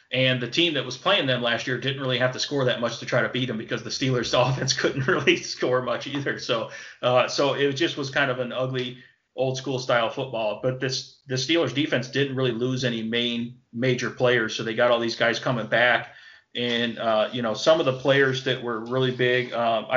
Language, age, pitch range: English, 30-49, 120-130 Hz